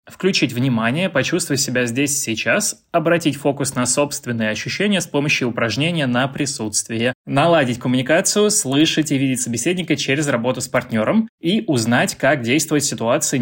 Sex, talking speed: male, 145 wpm